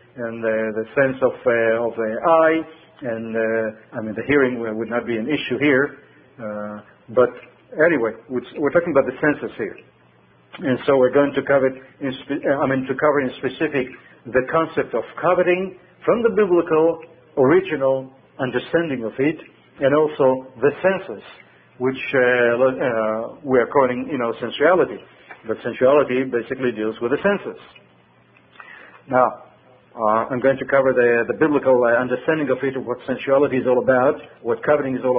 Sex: male